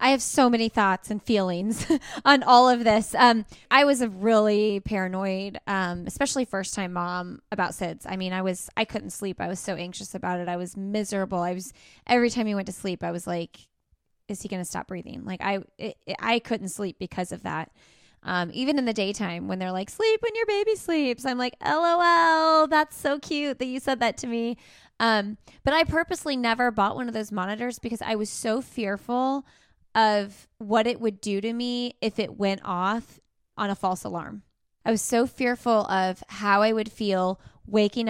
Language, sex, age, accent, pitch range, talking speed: English, female, 20-39, American, 195-245 Hz, 210 wpm